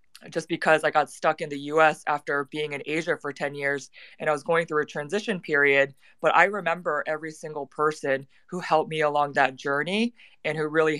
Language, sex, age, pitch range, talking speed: English, female, 20-39, 145-165 Hz, 205 wpm